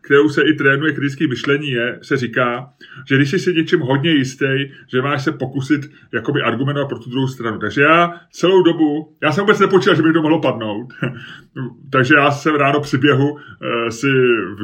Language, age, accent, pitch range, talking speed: Czech, 30-49, native, 130-160 Hz, 195 wpm